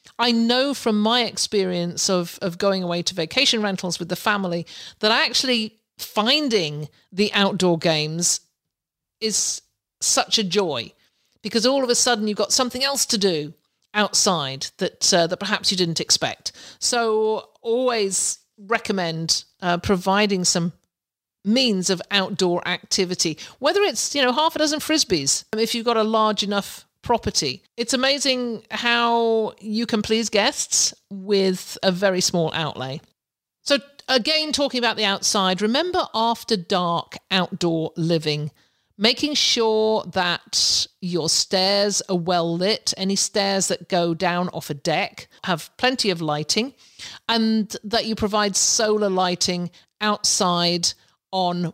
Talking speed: 140 wpm